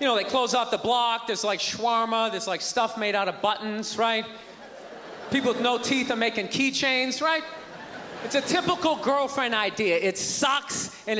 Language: English